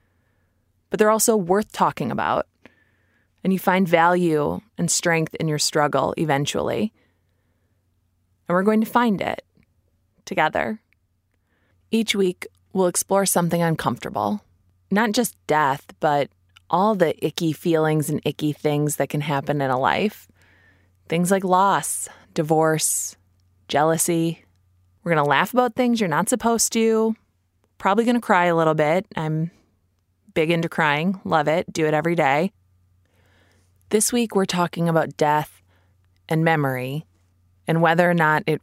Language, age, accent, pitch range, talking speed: English, 20-39, American, 130-195 Hz, 140 wpm